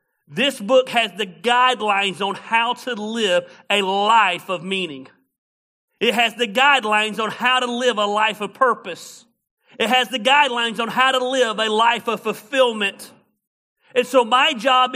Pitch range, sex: 210-245 Hz, male